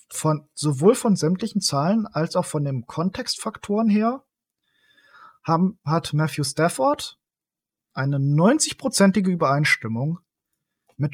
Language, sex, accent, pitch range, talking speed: German, male, German, 135-185 Hz, 100 wpm